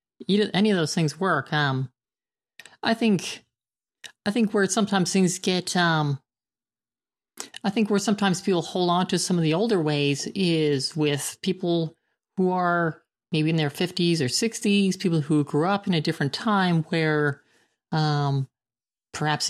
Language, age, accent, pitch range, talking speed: English, 40-59, American, 150-185 Hz, 155 wpm